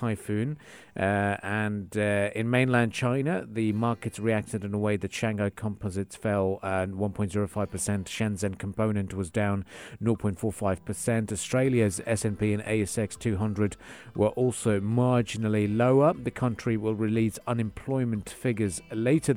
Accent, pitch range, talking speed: British, 105-130 Hz, 130 wpm